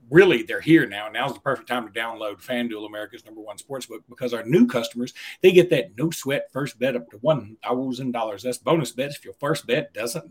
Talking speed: 210 wpm